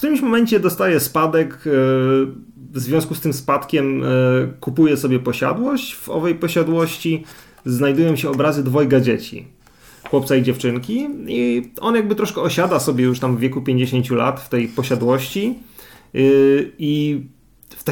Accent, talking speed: native, 135 wpm